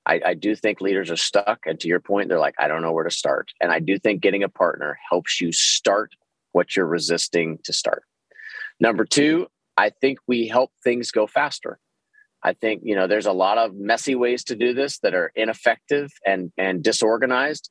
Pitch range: 100-135 Hz